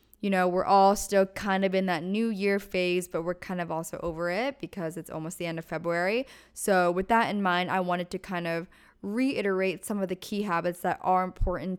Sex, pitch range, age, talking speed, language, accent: female, 170-195 Hz, 10-29, 230 wpm, English, American